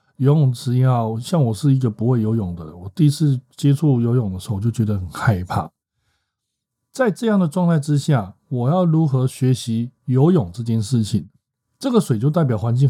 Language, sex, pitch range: Chinese, male, 110-145 Hz